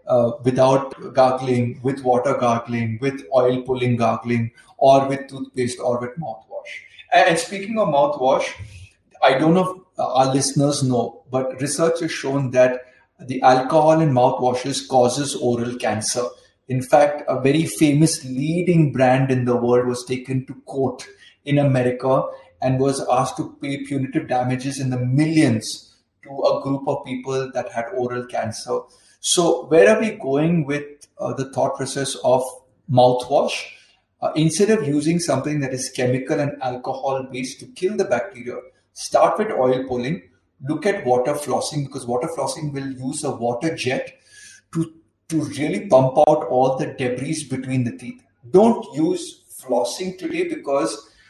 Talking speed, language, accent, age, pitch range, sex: 155 wpm, Hindi, native, 30-49, 125-155 Hz, male